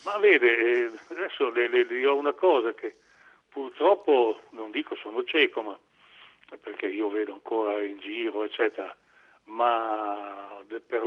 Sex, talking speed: male, 140 wpm